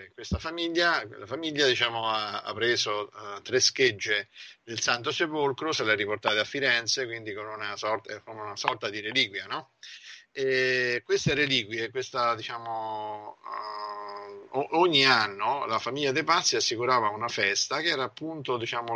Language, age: Italian, 50-69